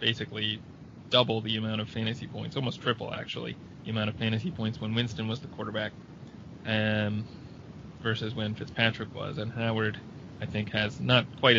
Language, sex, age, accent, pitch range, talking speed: English, male, 20-39, American, 110-125 Hz, 170 wpm